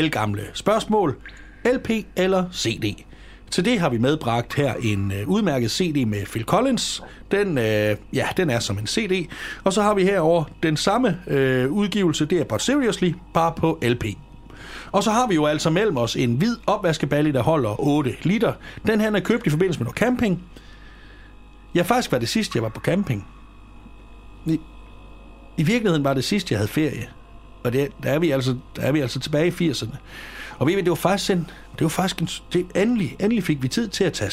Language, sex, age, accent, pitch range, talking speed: Danish, male, 60-79, native, 125-185 Hz, 190 wpm